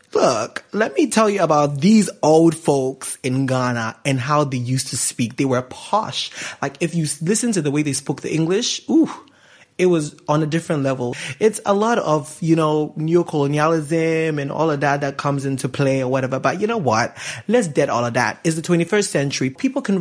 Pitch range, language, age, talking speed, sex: 140-185 Hz, English, 20-39, 210 wpm, male